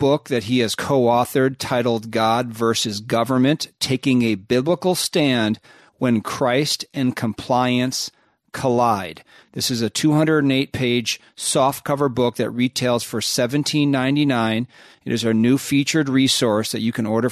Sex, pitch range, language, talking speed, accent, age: male, 115-140 Hz, English, 140 wpm, American, 40-59